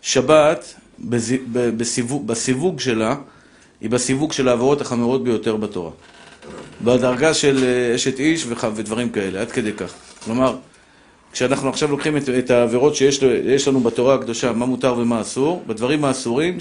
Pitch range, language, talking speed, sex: 120-145 Hz, Hebrew, 125 wpm, male